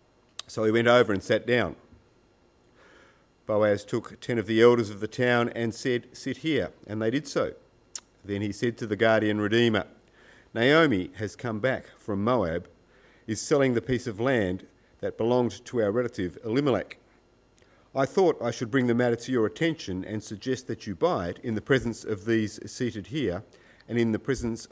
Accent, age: Australian, 50-69